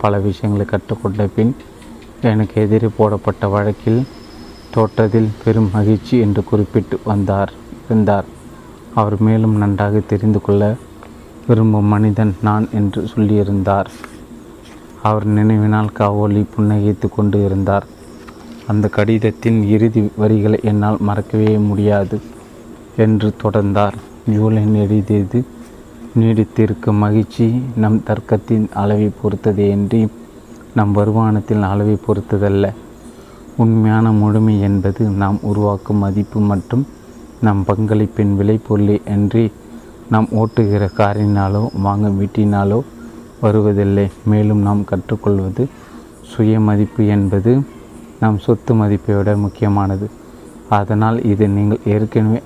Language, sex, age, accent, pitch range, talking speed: Tamil, male, 30-49, native, 100-110 Hz, 90 wpm